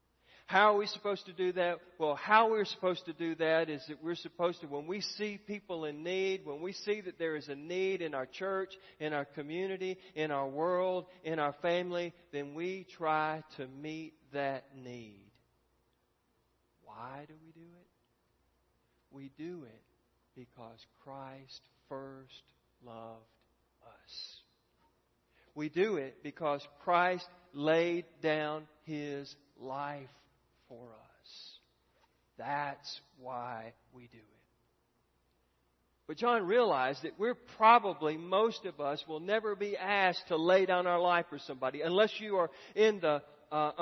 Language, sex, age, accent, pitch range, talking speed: English, male, 50-69, American, 140-185 Hz, 145 wpm